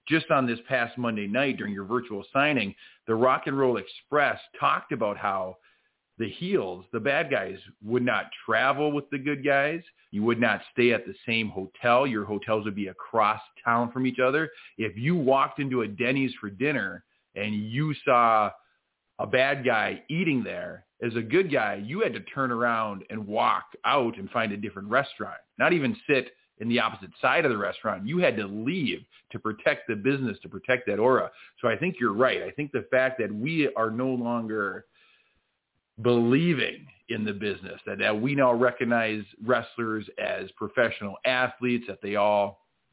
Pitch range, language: 110-135 Hz, English